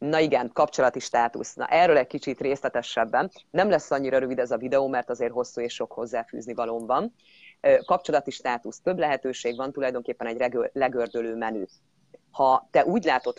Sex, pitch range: female, 115-135 Hz